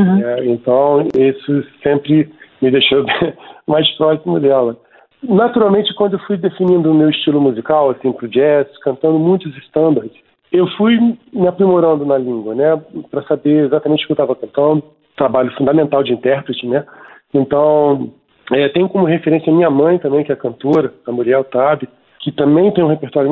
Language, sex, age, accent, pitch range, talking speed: Portuguese, male, 40-59, Brazilian, 140-185 Hz, 165 wpm